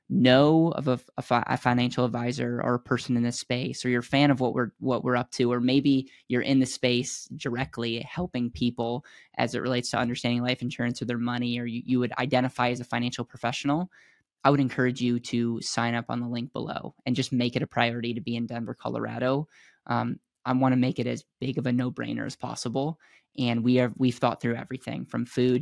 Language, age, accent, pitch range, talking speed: English, 10-29, American, 120-130 Hz, 220 wpm